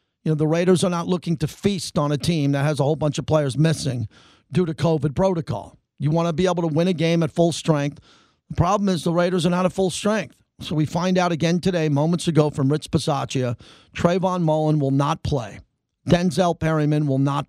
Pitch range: 145-185 Hz